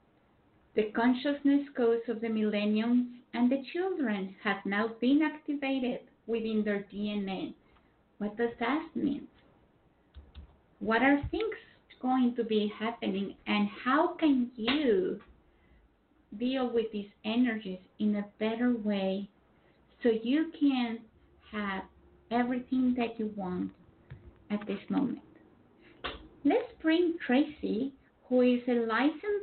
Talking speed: 115 wpm